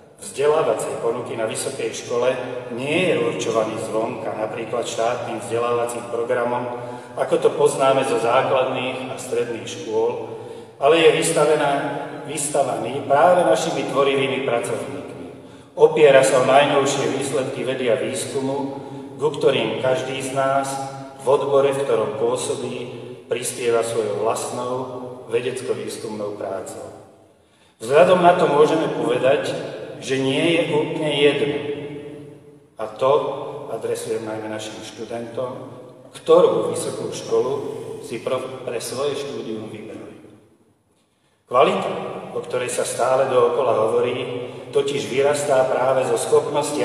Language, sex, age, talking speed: Slovak, male, 40-59, 115 wpm